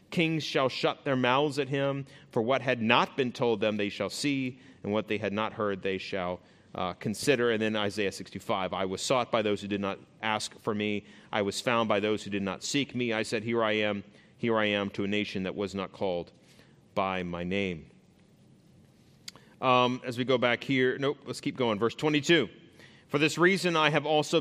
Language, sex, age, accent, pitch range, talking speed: English, male, 30-49, American, 105-140 Hz, 215 wpm